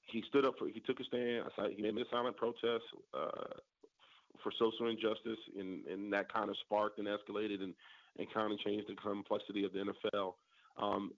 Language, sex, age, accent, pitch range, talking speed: English, male, 30-49, American, 100-115 Hz, 195 wpm